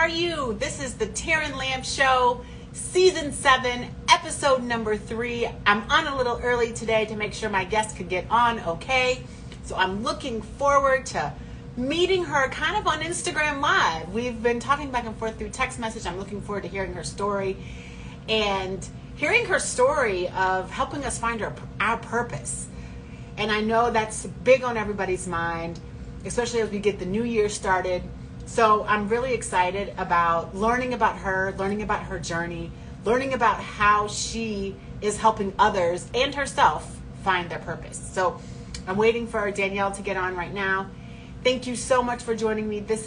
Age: 40-59